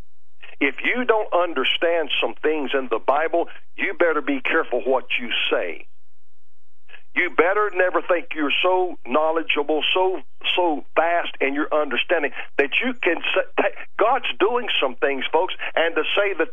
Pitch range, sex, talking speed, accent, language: 170-260 Hz, male, 155 wpm, American, English